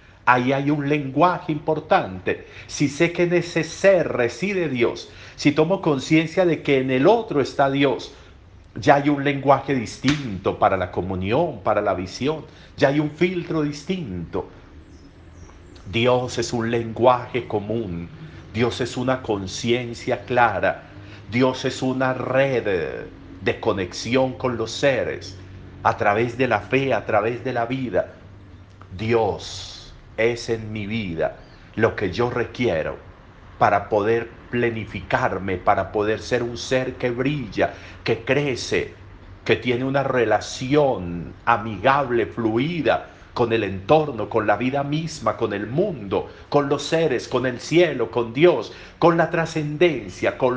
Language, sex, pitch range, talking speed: Spanish, male, 105-140 Hz, 140 wpm